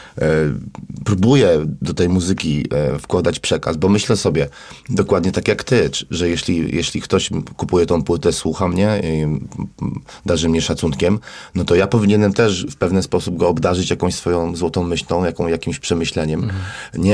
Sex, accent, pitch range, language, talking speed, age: male, native, 85-100 Hz, Polish, 155 wpm, 30-49